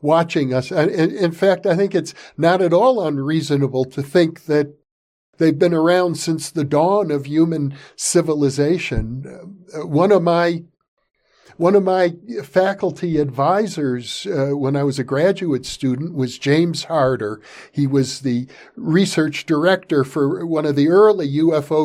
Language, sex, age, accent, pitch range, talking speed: English, male, 50-69, American, 135-185 Hz, 145 wpm